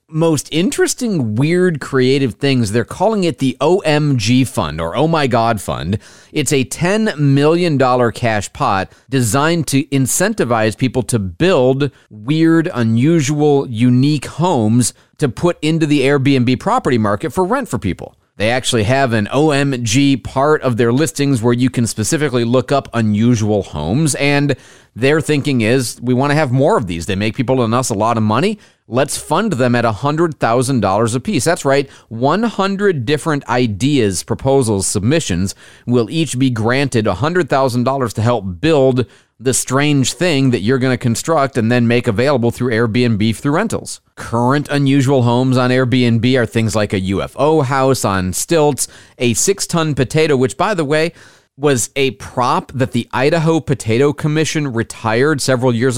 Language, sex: English, male